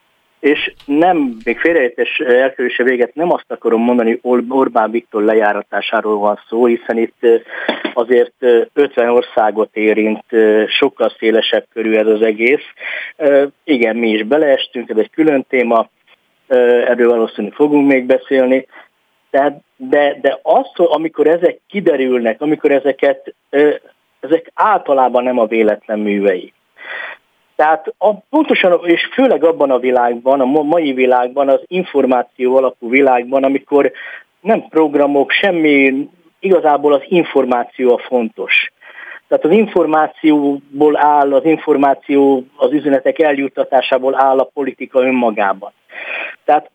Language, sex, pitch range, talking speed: Hungarian, male, 120-150 Hz, 120 wpm